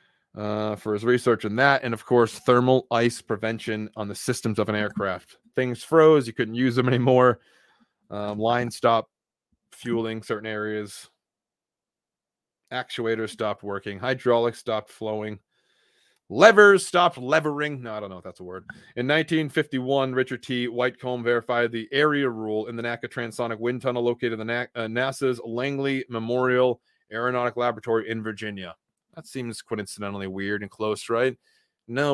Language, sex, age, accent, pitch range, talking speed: English, male, 30-49, American, 110-130 Hz, 155 wpm